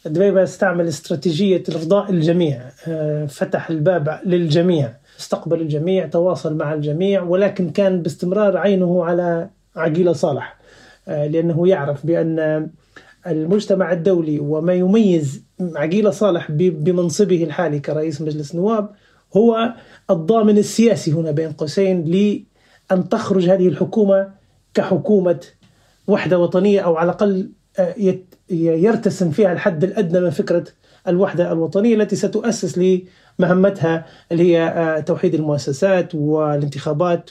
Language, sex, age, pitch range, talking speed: Arabic, male, 30-49, 165-195 Hz, 105 wpm